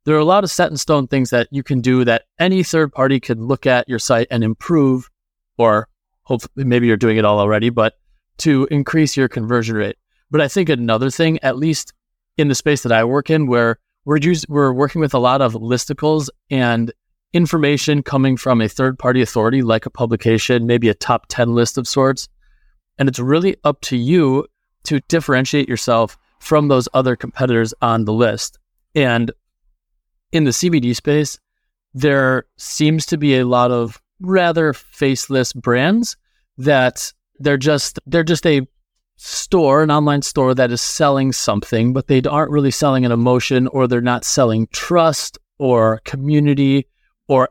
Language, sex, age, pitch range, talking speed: English, male, 20-39, 120-145 Hz, 175 wpm